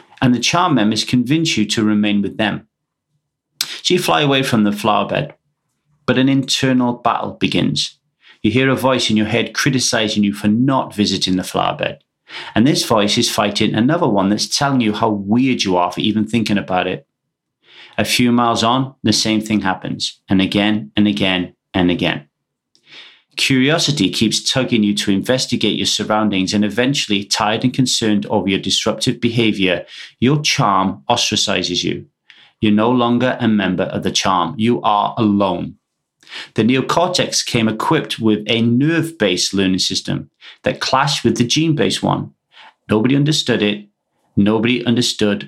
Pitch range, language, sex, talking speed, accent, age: 100-125 Hz, English, male, 160 wpm, British, 30-49